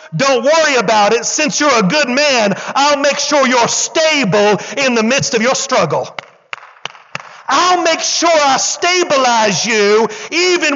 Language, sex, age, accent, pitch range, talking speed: English, male, 50-69, American, 235-320 Hz, 150 wpm